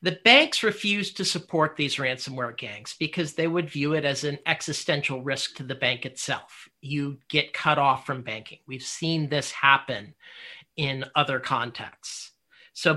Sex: male